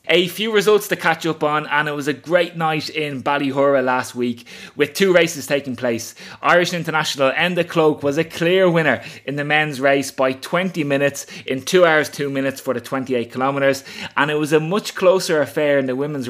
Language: English